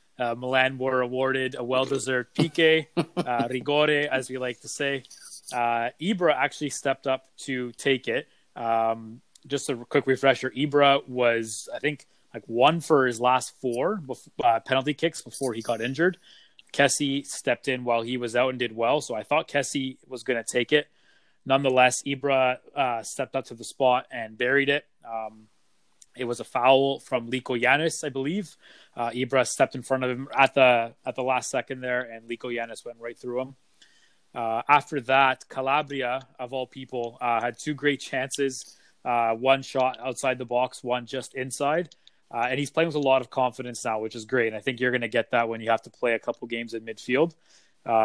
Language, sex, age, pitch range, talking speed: English, male, 20-39, 120-135 Hz, 195 wpm